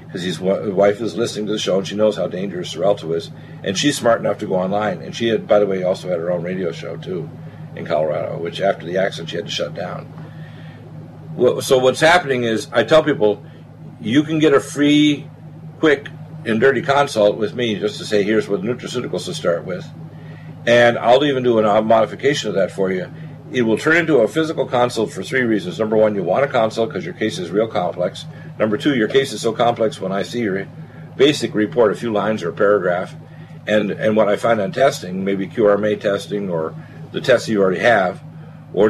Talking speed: 220 wpm